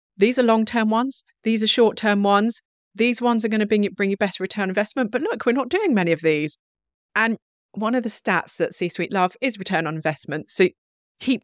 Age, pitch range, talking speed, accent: 30-49, 185-240 Hz, 220 wpm, British